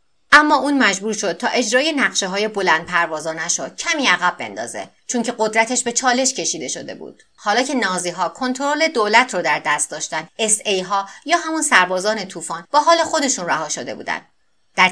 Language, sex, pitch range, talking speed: Persian, female, 165-230 Hz, 180 wpm